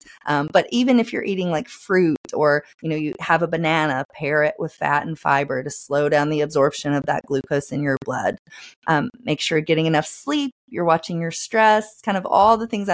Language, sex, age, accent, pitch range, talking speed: English, female, 30-49, American, 160-200 Hz, 225 wpm